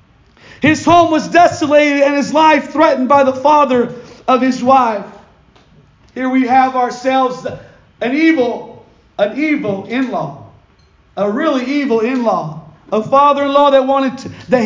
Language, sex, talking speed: English, male, 135 wpm